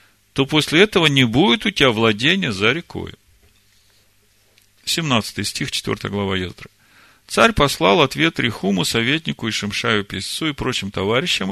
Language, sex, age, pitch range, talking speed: Russian, male, 40-59, 100-140 Hz, 135 wpm